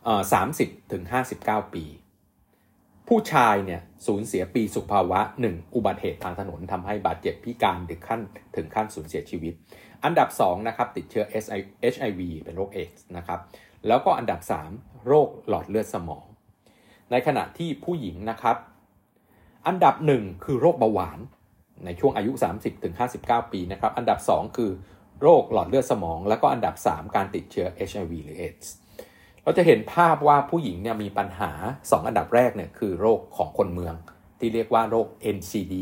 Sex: male